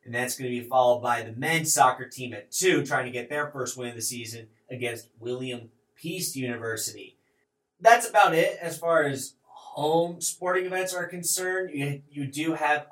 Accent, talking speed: American, 185 wpm